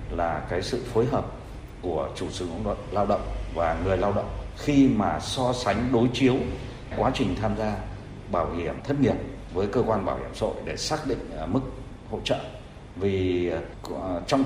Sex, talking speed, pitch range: male, 185 wpm, 95-125 Hz